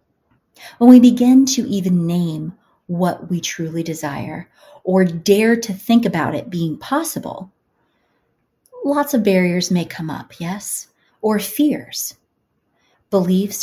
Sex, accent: female, American